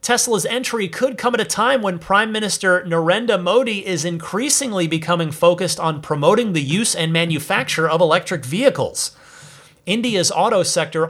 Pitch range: 155-200 Hz